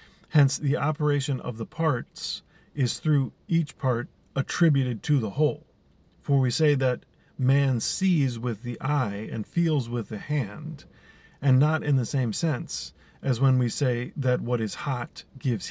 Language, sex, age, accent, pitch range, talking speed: English, male, 40-59, American, 120-150 Hz, 165 wpm